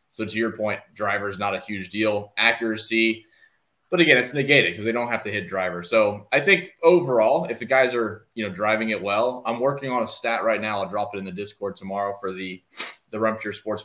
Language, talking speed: English, 235 wpm